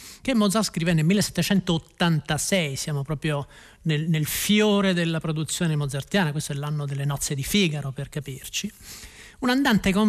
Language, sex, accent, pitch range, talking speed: Italian, male, native, 155-200 Hz, 150 wpm